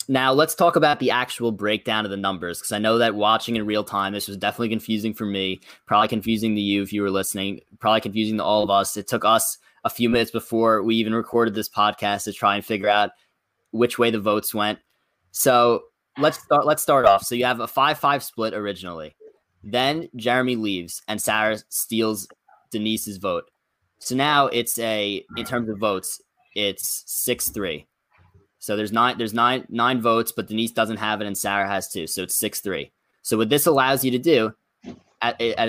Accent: American